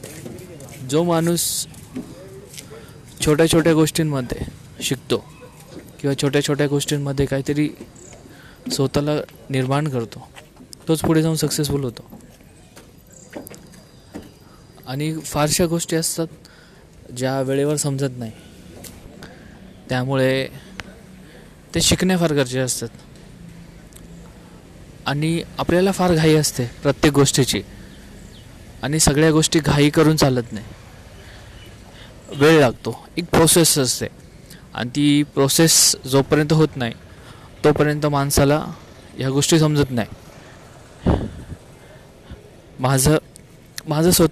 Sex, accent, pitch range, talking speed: male, native, 130-155 Hz, 80 wpm